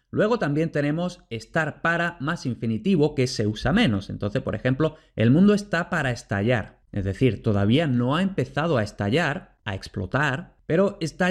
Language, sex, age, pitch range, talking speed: Spanish, male, 30-49, 120-160 Hz, 165 wpm